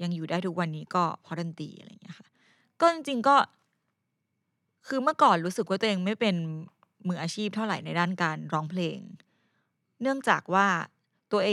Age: 20-39